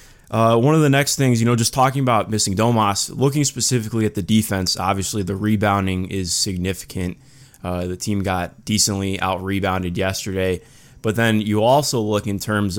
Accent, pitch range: American, 100-115 Hz